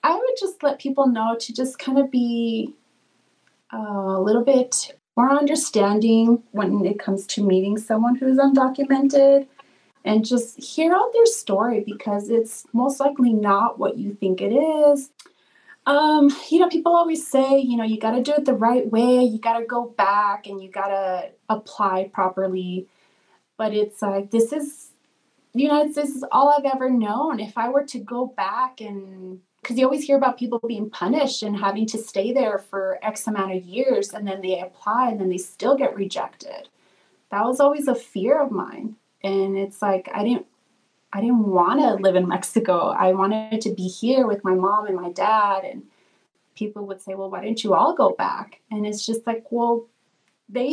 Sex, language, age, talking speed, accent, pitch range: female, English, 30-49, 195 wpm, American, 200-275 Hz